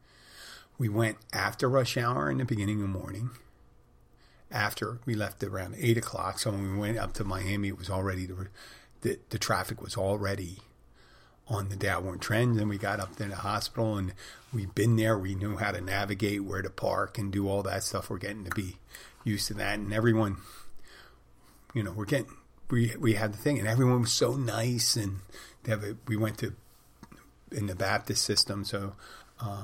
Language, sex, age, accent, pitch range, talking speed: English, male, 40-59, American, 100-115 Hz, 200 wpm